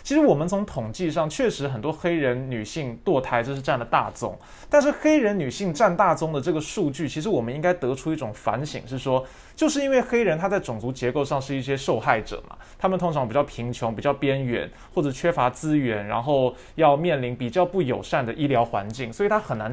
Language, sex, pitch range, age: Chinese, male, 125-190 Hz, 20-39